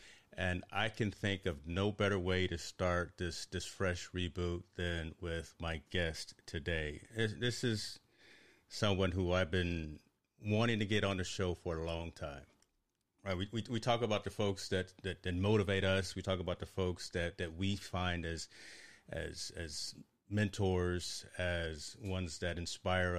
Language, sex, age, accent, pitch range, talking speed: English, male, 40-59, American, 85-100 Hz, 170 wpm